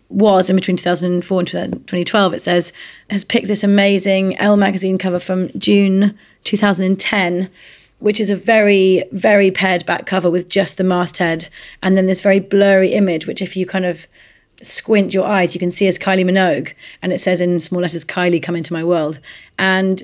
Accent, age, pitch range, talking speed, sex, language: British, 30-49, 180-205 Hz, 185 wpm, female, English